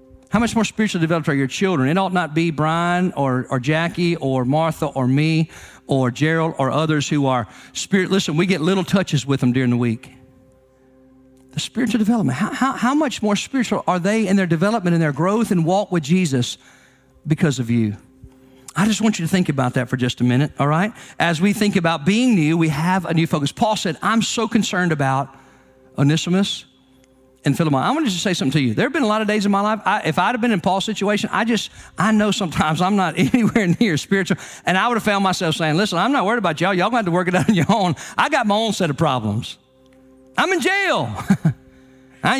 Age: 50-69